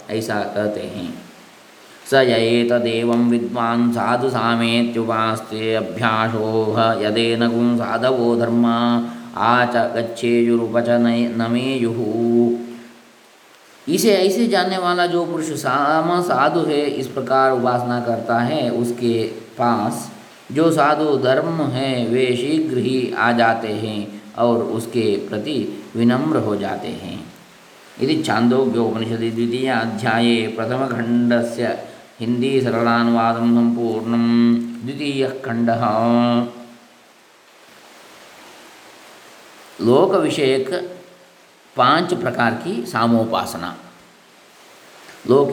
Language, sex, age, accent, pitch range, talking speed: English, male, 20-39, Indian, 115-130 Hz, 90 wpm